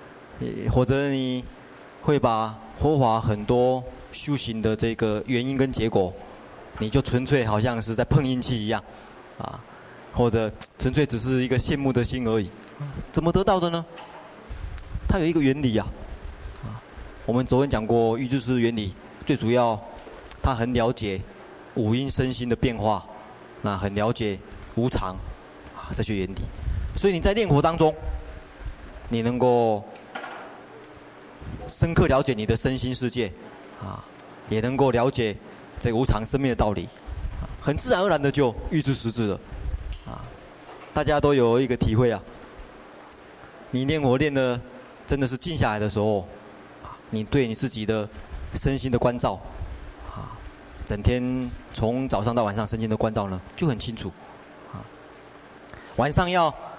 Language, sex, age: Chinese, male, 20-39